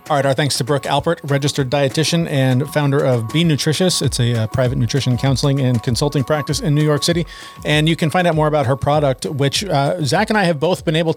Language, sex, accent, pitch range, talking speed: English, male, American, 120-150 Hz, 240 wpm